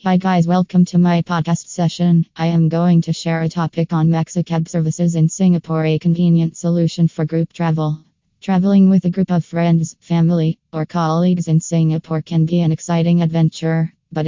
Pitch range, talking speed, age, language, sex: 160-175 Hz, 175 wpm, 20-39, English, female